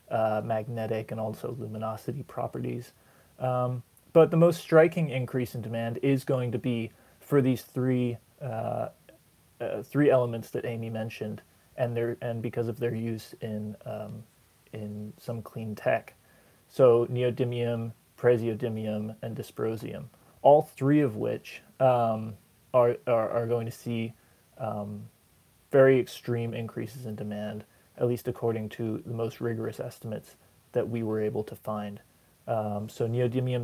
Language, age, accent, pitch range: English, 30-49, American, 110-125 Hz